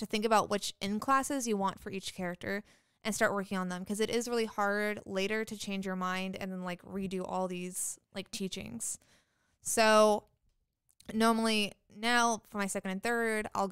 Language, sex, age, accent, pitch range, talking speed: English, female, 20-39, American, 195-220 Hz, 190 wpm